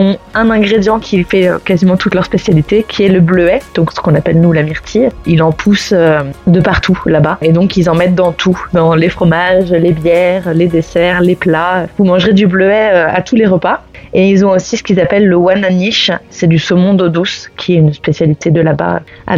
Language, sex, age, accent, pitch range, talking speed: French, female, 20-39, French, 170-200 Hz, 215 wpm